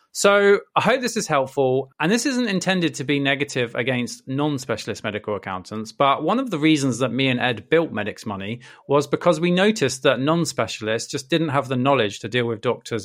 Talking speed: 200 wpm